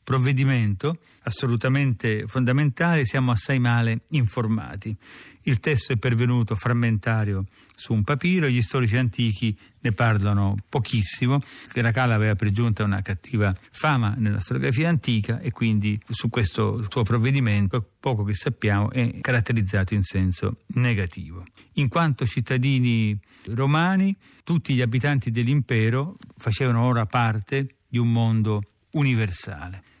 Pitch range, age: 105-130 Hz, 40-59